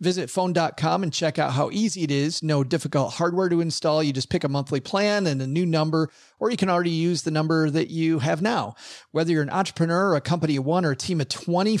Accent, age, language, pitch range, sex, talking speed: American, 40-59, English, 145-180 Hz, male, 245 wpm